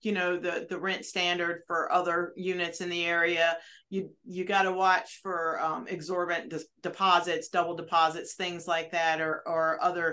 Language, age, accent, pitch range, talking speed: English, 40-59, American, 165-185 Hz, 170 wpm